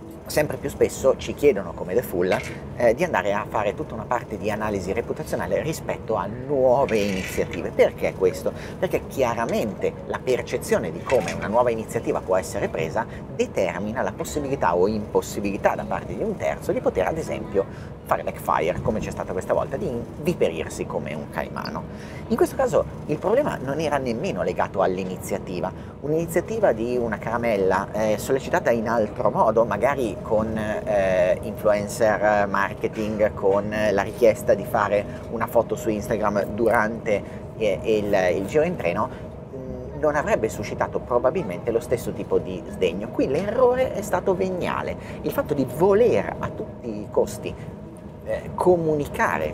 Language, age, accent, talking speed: Italian, 30-49, native, 155 wpm